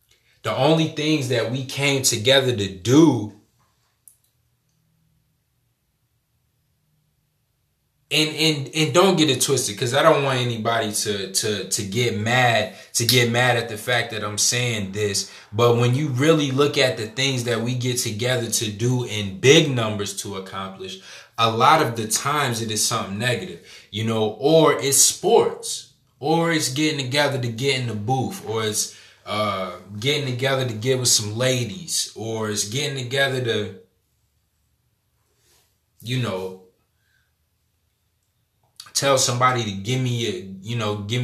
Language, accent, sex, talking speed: English, American, male, 145 wpm